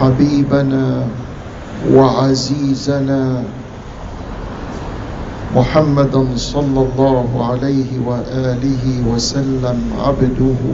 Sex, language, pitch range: male, English, 130-140 Hz